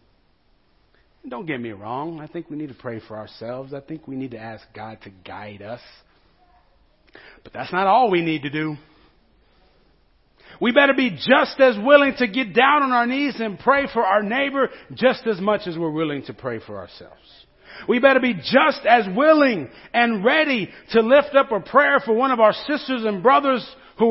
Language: English